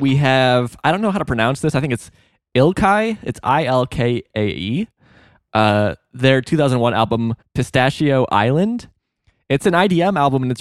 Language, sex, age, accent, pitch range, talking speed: English, male, 20-39, American, 115-145 Hz, 175 wpm